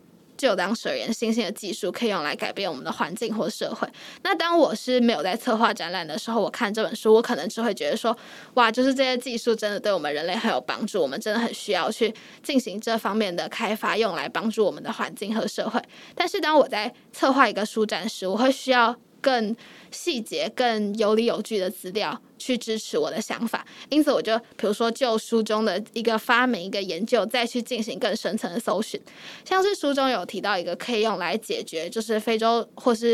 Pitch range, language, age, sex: 220-250 Hz, Chinese, 10-29, female